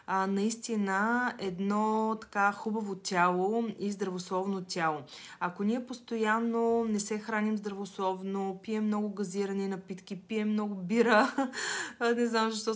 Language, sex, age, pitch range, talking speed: Bulgarian, female, 20-39, 185-220 Hz, 120 wpm